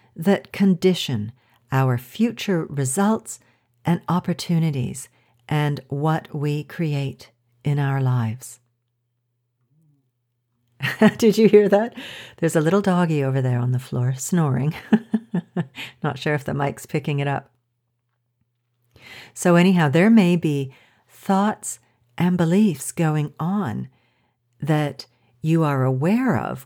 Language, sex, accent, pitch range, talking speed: English, female, American, 120-165 Hz, 115 wpm